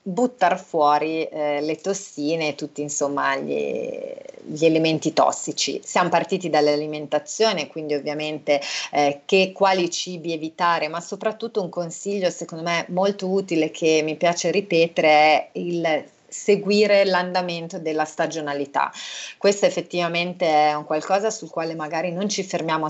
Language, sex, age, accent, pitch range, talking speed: Italian, female, 30-49, native, 150-180 Hz, 135 wpm